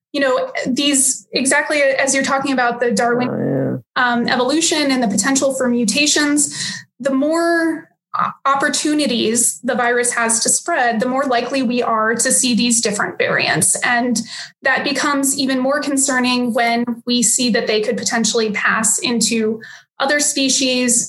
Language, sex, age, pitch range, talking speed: English, female, 20-39, 240-290 Hz, 150 wpm